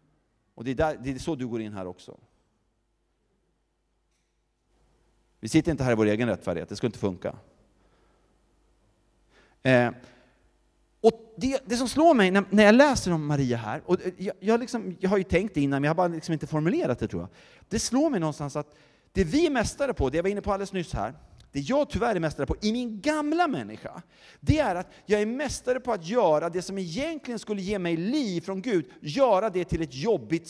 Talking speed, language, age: 210 wpm, Swedish, 30-49